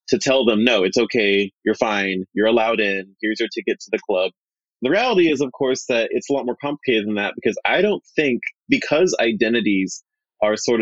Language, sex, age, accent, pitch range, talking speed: English, male, 30-49, American, 105-135 Hz, 210 wpm